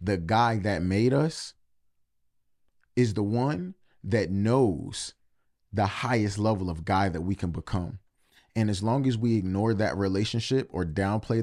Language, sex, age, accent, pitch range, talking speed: English, male, 30-49, American, 100-120 Hz, 150 wpm